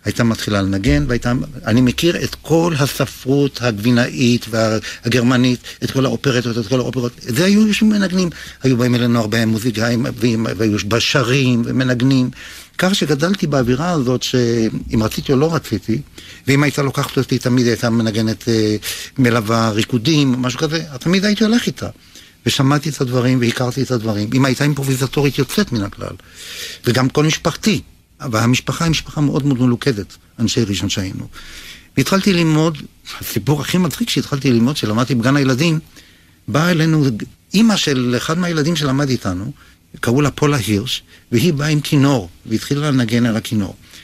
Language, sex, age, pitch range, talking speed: Hebrew, male, 60-79, 115-145 Hz, 145 wpm